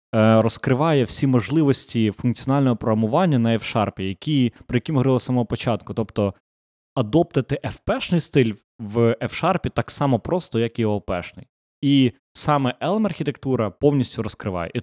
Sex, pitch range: male, 100-130 Hz